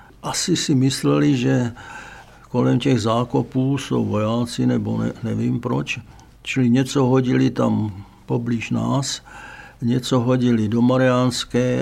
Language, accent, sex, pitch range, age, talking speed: Czech, native, male, 115-130 Hz, 60-79, 110 wpm